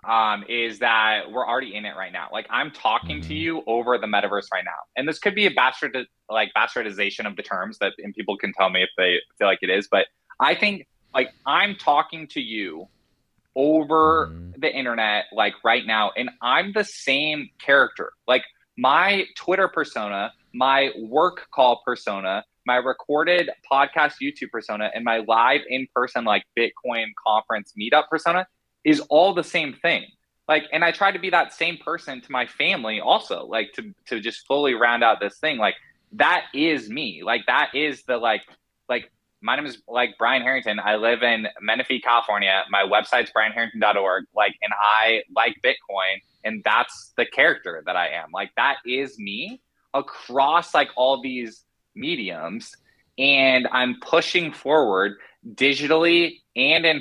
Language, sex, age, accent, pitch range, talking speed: English, male, 20-39, American, 115-160 Hz, 170 wpm